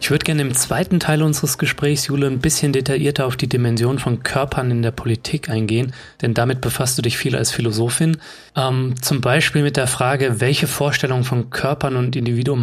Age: 30-49